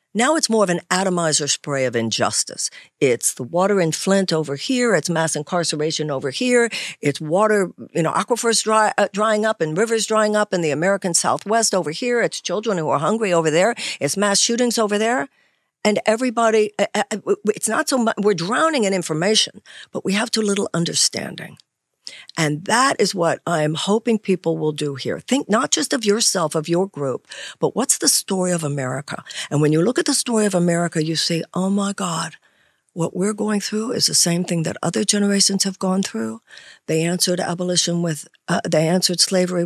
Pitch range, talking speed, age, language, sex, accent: 165-215 Hz, 195 wpm, 60-79, English, female, American